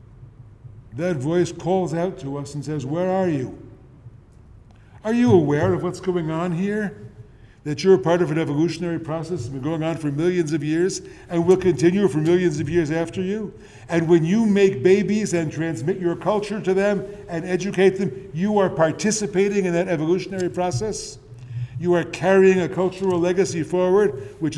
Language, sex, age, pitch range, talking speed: English, male, 50-69, 130-185 Hz, 180 wpm